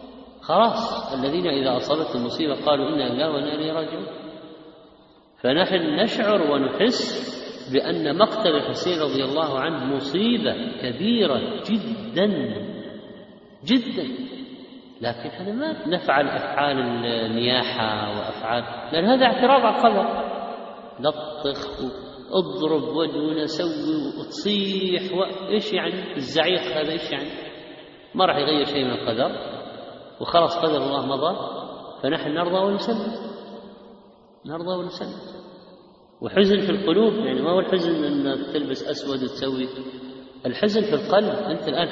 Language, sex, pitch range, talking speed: Arabic, male, 140-200 Hz, 110 wpm